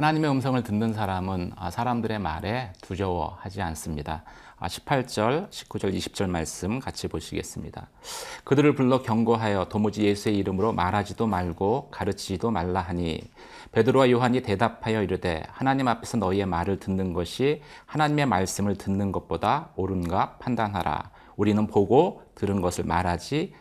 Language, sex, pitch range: Korean, male, 95-125 Hz